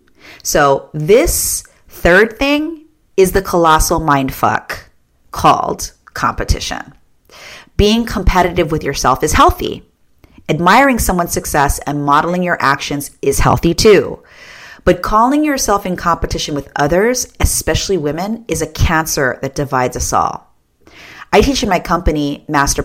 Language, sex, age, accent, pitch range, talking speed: English, female, 30-49, American, 145-205 Hz, 125 wpm